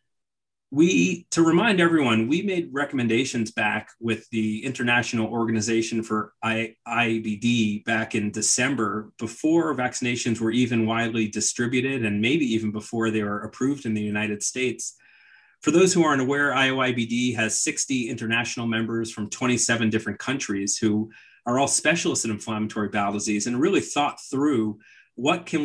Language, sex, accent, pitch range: English, male, American, 110-130 Hz